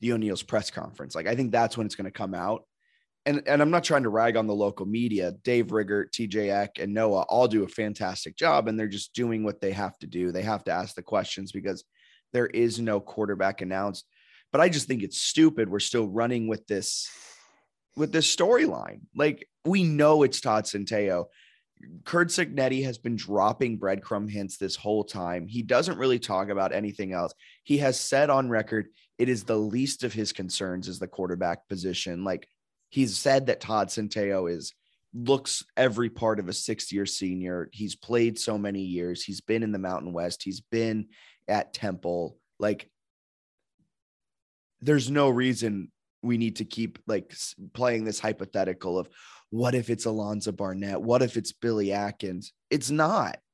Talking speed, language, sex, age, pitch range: 185 wpm, English, male, 20-39, 95-120 Hz